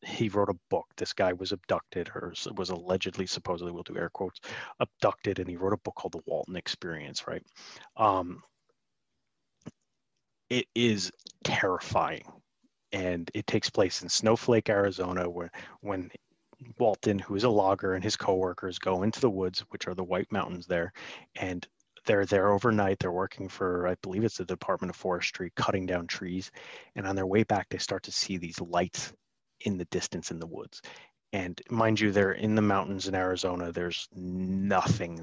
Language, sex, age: English, male, 30-49